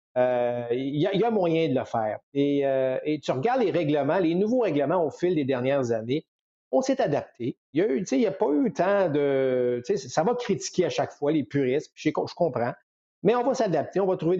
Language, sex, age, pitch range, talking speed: French, male, 50-69, 130-175 Hz, 225 wpm